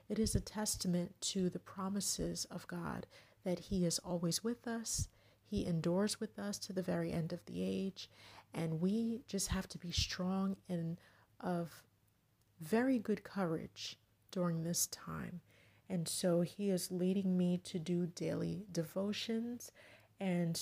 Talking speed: 150 wpm